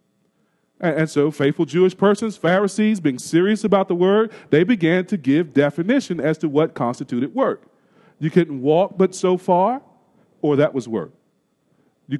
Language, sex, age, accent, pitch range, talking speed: English, male, 40-59, American, 130-200 Hz, 155 wpm